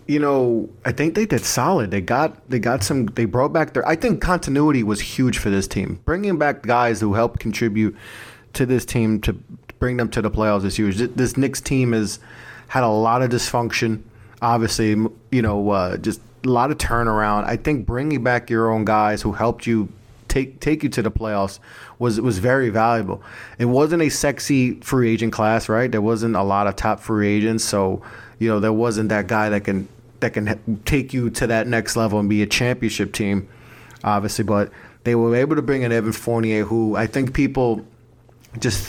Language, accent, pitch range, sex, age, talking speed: English, American, 110-125 Hz, male, 30-49, 205 wpm